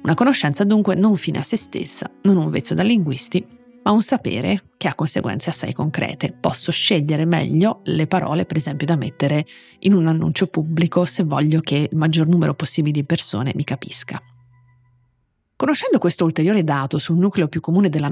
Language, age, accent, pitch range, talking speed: Italian, 30-49, native, 150-190 Hz, 180 wpm